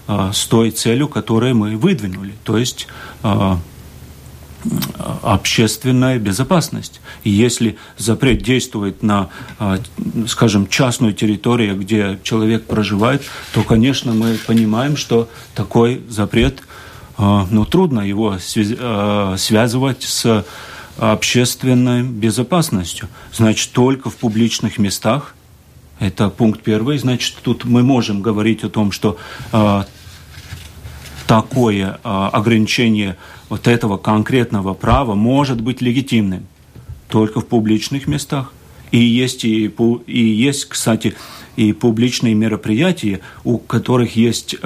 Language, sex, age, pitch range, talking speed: Russian, male, 40-59, 105-120 Hz, 110 wpm